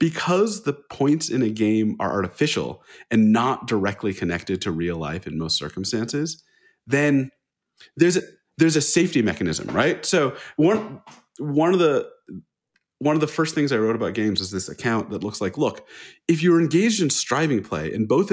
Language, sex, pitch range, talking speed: English, male, 110-160 Hz, 180 wpm